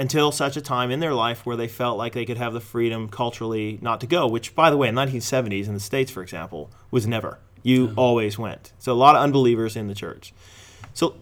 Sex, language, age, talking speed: male, English, 30-49, 245 wpm